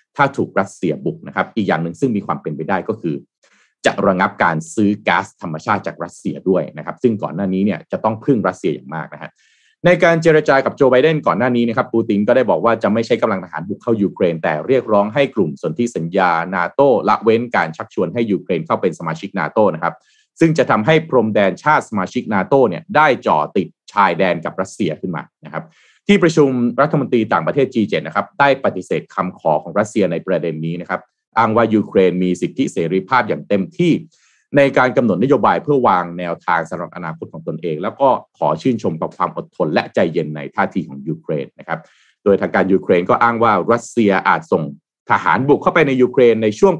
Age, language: 30-49, Thai